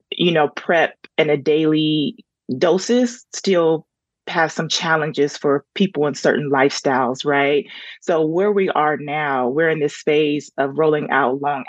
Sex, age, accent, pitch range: female, 30-49, American, 145-175 Hz